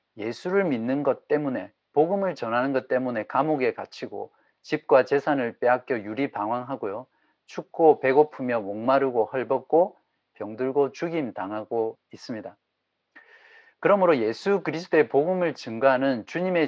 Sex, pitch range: male, 130-175 Hz